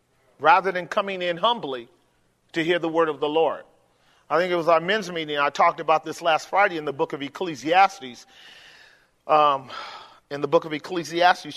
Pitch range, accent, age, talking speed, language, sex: 150-210 Hz, American, 40-59, 185 wpm, English, male